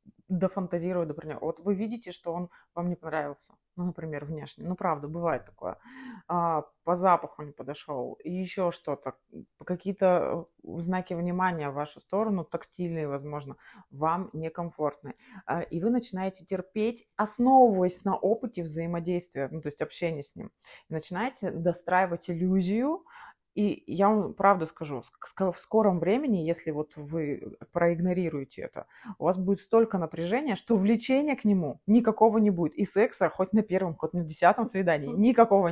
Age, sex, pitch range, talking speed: 20-39, female, 155-200 Hz, 150 wpm